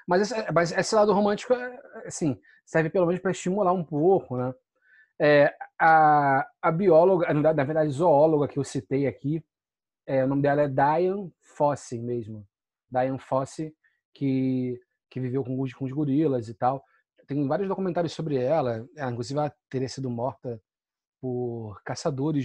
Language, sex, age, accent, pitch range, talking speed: Portuguese, male, 30-49, Brazilian, 125-160 Hz, 155 wpm